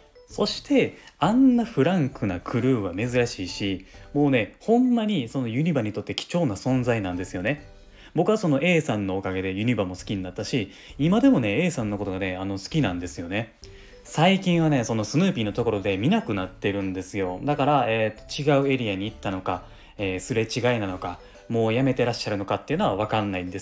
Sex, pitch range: male, 100-145 Hz